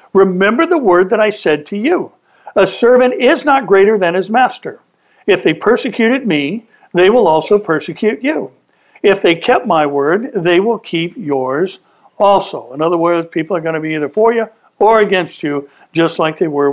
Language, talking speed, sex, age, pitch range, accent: English, 190 wpm, male, 60-79, 170-240 Hz, American